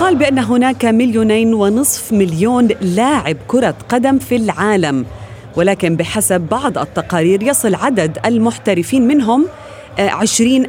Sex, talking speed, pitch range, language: female, 110 wpm, 145-220 Hz, Arabic